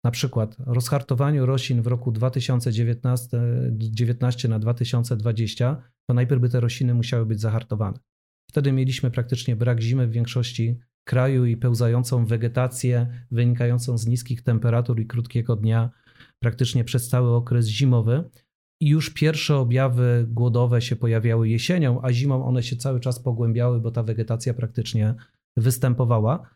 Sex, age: male, 40-59